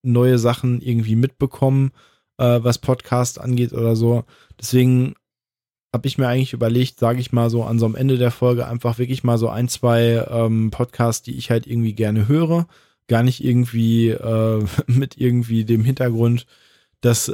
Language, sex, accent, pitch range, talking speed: German, male, German, 115-125 Hz, 170 wpm